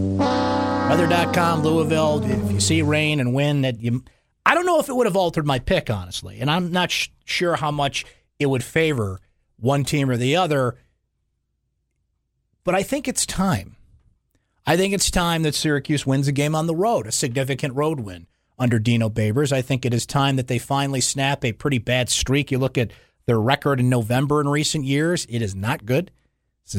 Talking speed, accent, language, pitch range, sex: 195 wpm, American, English, 120-155 Hz, male